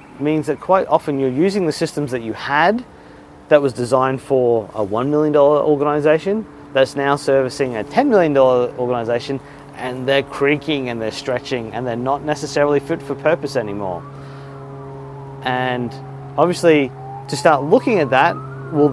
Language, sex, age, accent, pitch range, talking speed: English, male, 30-49, Australian, 125-145 Hz, 150 wpm